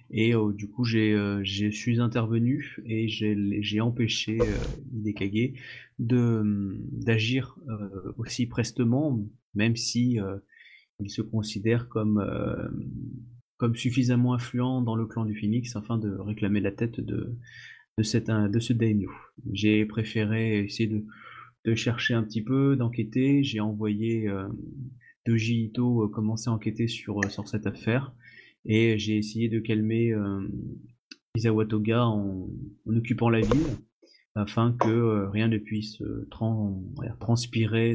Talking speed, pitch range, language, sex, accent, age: 145 wpm, 105-120 Hz, French, male, French, 20-39